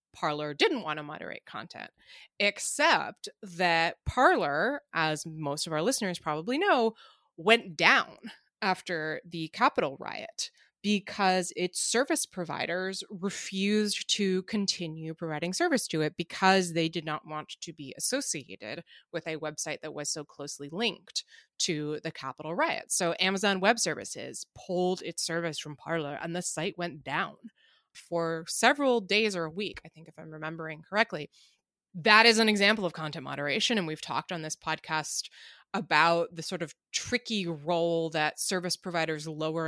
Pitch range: 155-200 Hz